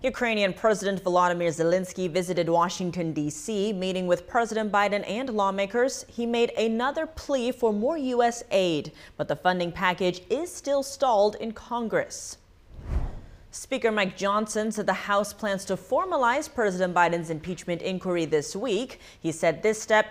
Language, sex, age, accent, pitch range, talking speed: English, female, 30-49, American, 180-235 Hz, 145 wpm